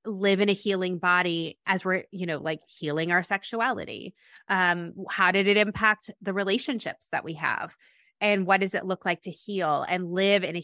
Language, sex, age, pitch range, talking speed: English, female, 20-39, 170-210 Hz, 195 wpm